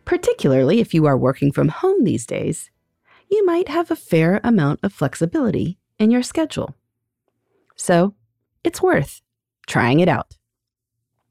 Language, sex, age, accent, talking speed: English, female, 30-49, American, 140 wpm